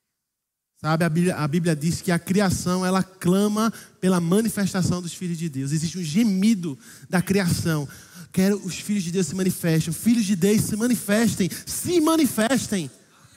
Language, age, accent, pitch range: Portuguese, 20-39, Brazilian, 175-220 Hz